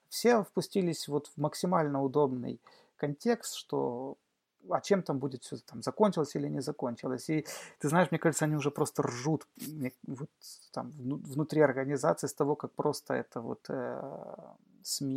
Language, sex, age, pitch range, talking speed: Russian, male, 30-49, 130-155 Hz, 145 wpm